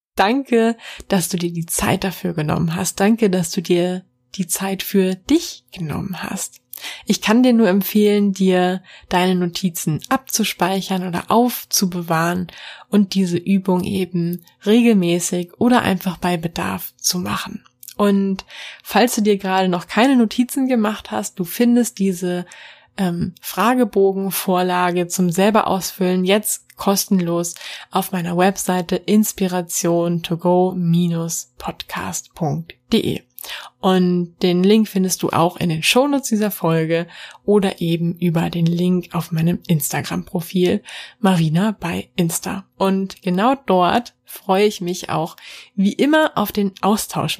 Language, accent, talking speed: German, German, 125 wpm